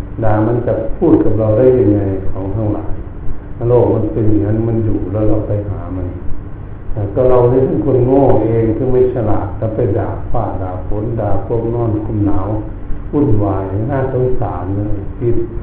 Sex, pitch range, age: male, 100-115 Hz, 60-79